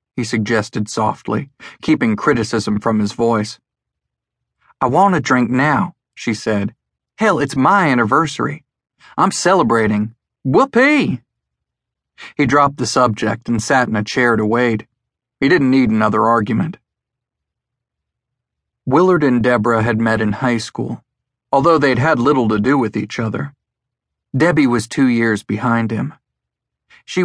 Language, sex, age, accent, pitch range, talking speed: English, male, 40-59, American, 110-130 Hz, 135 wpm